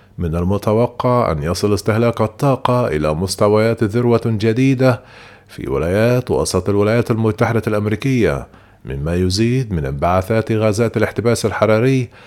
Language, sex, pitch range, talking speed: Arabic, male, 105-120 Hz, 110 wpm